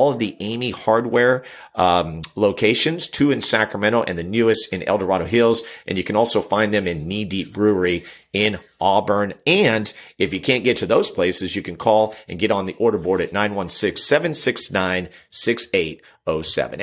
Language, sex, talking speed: English, male, 170 wpm